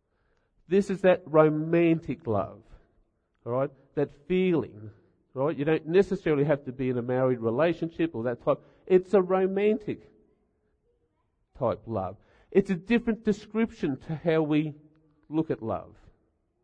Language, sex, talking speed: English, male, 135 wpm